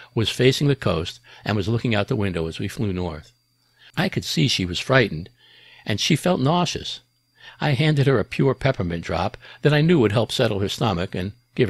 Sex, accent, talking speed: male, American, 210 wpm